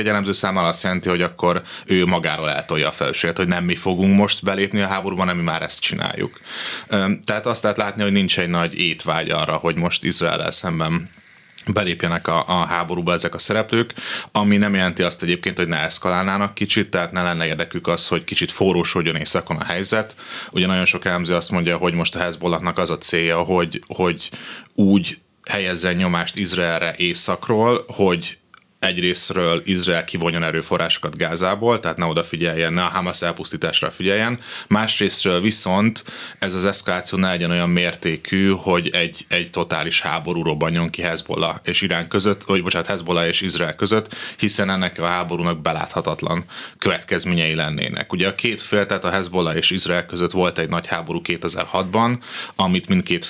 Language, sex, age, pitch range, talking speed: Hungarian, male, 30-49, 85-100 Hz, 165 wpm